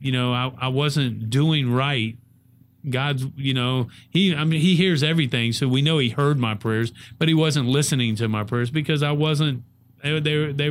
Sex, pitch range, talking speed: male, 120-135 Hz, 200 wpm